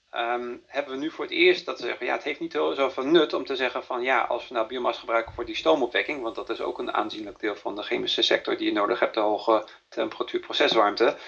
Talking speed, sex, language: 250 wpm, male, Dutch